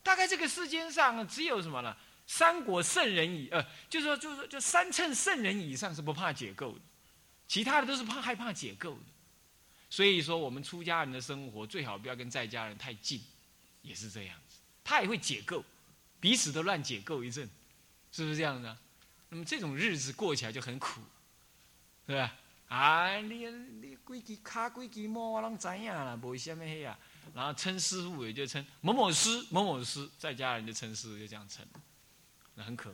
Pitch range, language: 115-185 Hz, Chinese